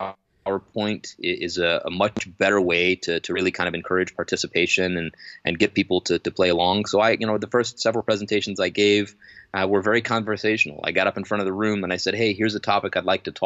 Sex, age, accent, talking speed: male, 20-39, American, 240 wpm